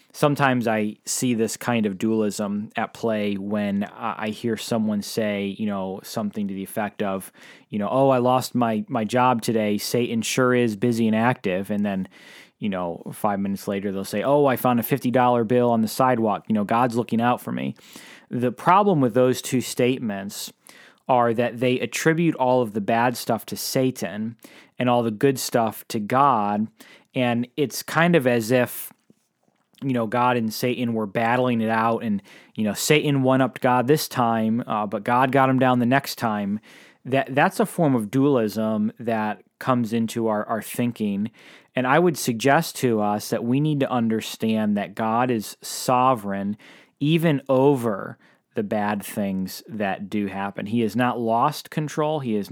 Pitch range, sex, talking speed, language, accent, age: 105-130 Hz, male, 185 wpm, English, American, 20-39